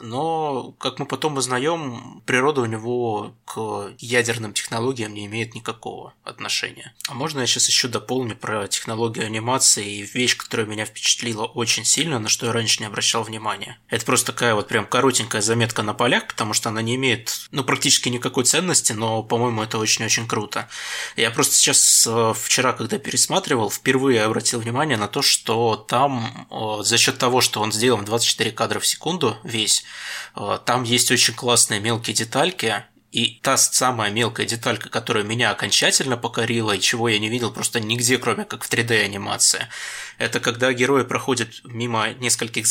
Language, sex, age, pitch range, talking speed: Russian, male, 20-39, 110-125 Hz, 165 wpm